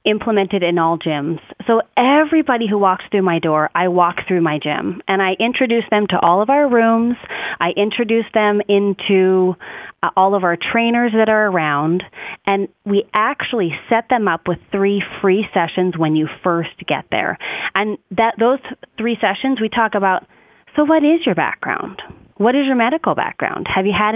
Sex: female